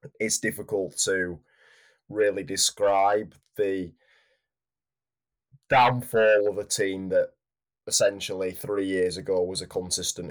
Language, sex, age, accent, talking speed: English, male, 20-39, British, 105 wpm